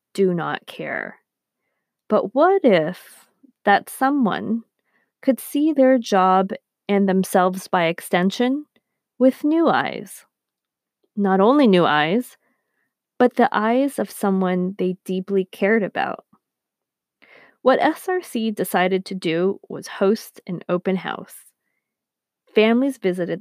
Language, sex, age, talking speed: English, female, 20-39, 115 wpm